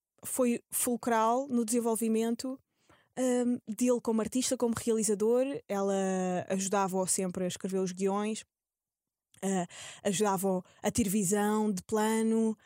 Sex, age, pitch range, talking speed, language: female, 20-39, 195-245 Hz, 120 wpm, Portuguese